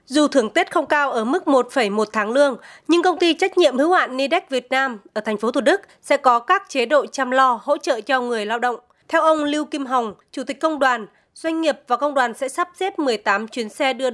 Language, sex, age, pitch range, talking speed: Vietnamese, female, 20-39, 240-295 Hz, 250 wpm